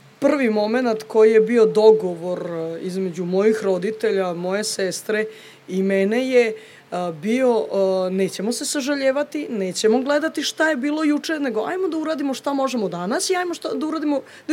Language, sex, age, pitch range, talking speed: Croatian, female, 20-39, 195-245 Hz, 155 wpm